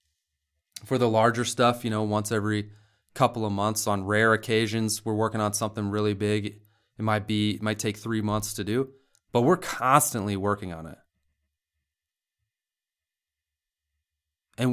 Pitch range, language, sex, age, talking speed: 105-140 Hz, English, male, 30-49, 150 wpm